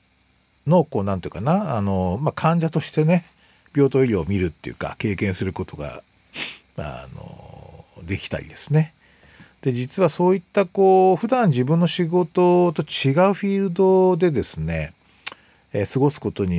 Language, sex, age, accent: Japanese, male, 50-69, native